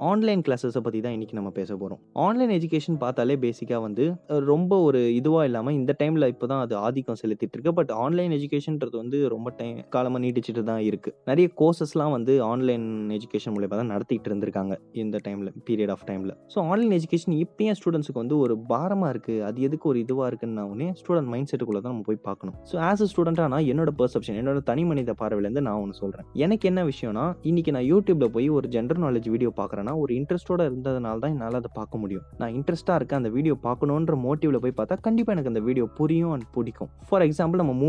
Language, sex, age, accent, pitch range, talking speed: Tamil, male, 20-39, native, 115-165 Hz, 145 wpm